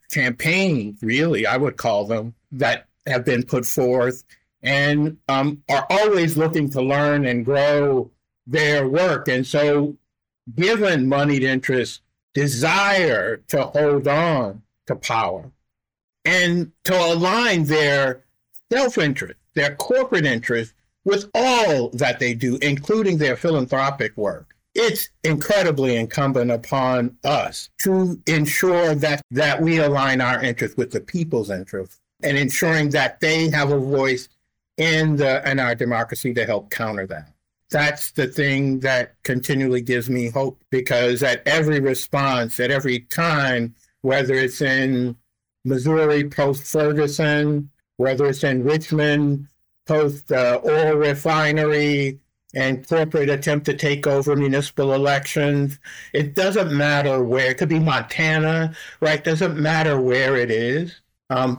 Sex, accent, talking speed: male, American, 130 wpm